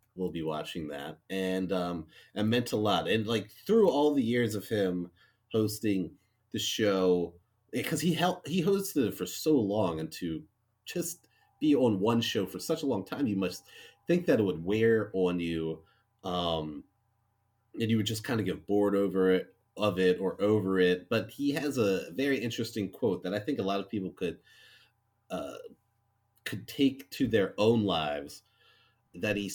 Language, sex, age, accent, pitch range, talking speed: English, male, 30-49, American, 95-115 Hz, 185 wpm